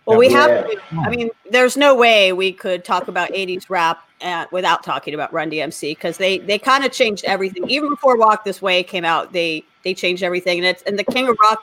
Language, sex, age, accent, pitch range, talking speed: English, female, 40-59, American, 180-220 Hz, 230 wpm